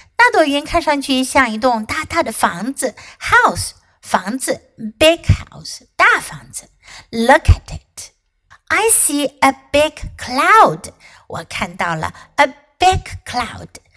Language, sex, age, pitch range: Chinese, female, 60-79, 245-340 Hz